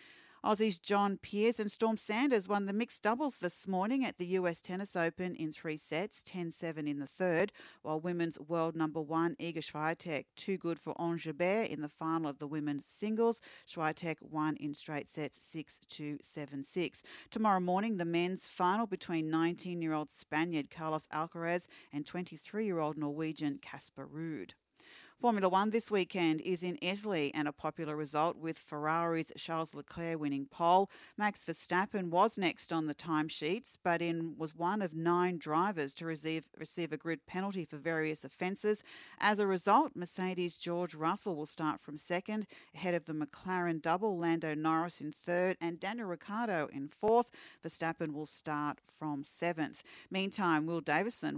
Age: 40-59